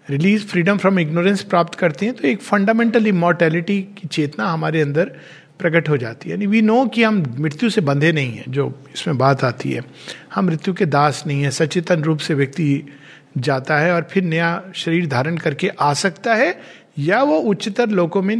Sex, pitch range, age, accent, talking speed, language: male, 150-215 Hz, 50-69, native, 195 wpm, Hindi